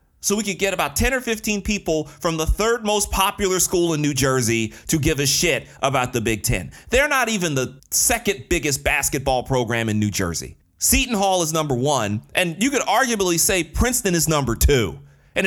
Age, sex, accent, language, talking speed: 30-49, male, American, English, 200 wpm